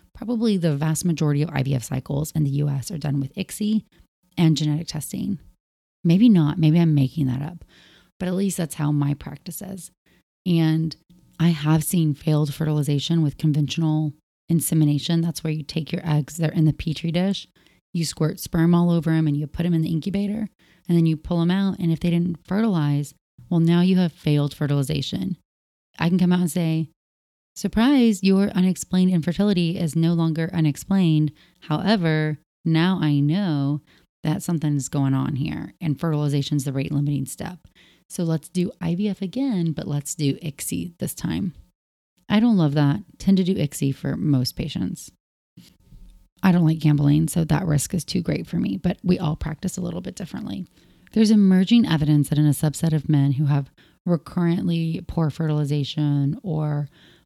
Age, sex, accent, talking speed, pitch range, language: 30-49, female, American, 175 wpm, 150-180 Hz, English